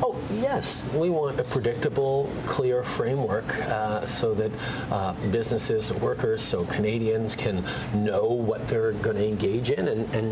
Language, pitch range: English, 105-135 Hz